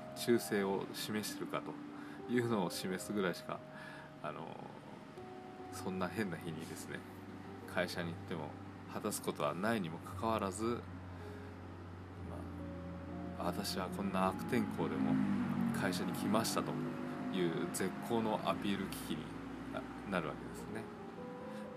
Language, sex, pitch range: Japanese, male, 80-100 Hz